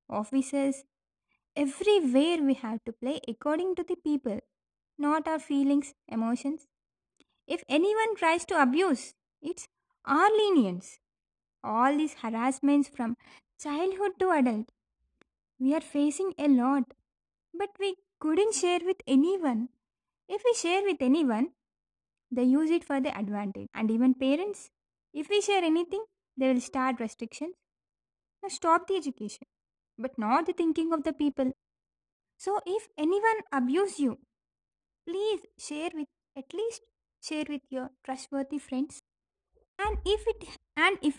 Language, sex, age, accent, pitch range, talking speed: Telugu, female, 20-39, native, 260-350 Hz, 135 wpm